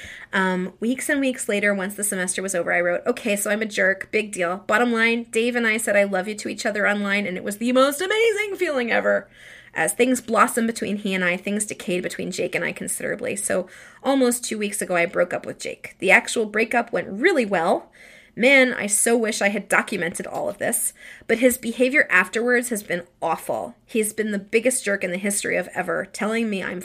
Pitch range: 185-235 Hz